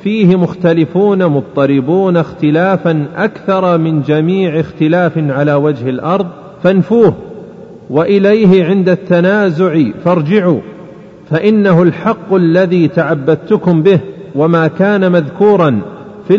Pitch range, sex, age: 155-195 Hz, male, 40-59